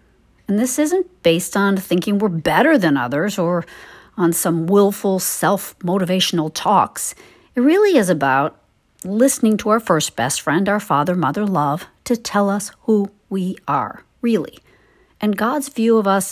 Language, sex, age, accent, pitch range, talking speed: English, female, 50-69, American, 160-235 Hz, 150 wpm